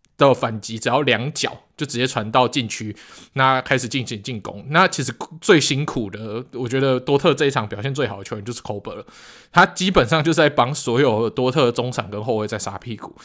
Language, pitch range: Chinese, 115-160 Hz